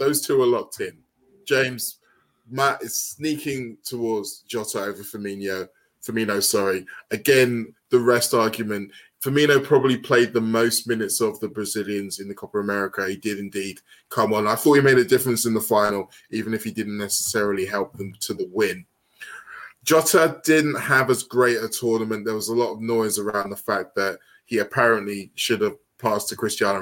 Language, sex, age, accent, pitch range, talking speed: English, male, 20-39, British, 105-130 Hz, 175 wpm